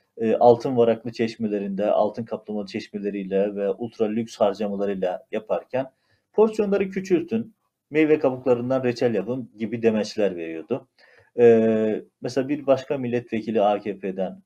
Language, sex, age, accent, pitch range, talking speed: Turkish, male, 40-59, native, 105-130 Hz, 110 wpm